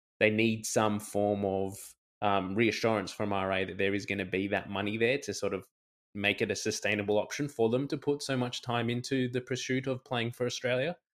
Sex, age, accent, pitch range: male, 20-39, Australian, 105-125 Hz